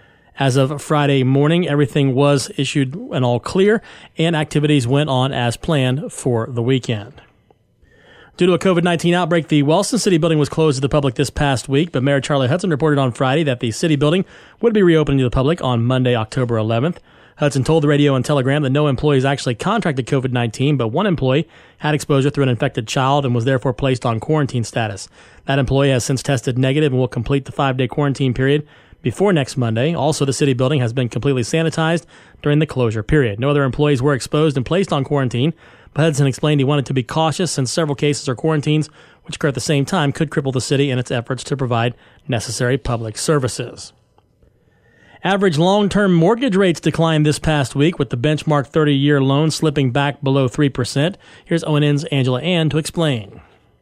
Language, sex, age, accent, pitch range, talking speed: English, male, 30-49, American, 130-155 Hz, 195 wpm